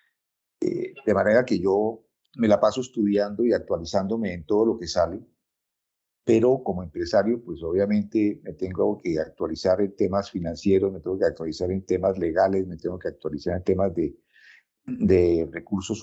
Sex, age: male, 50-69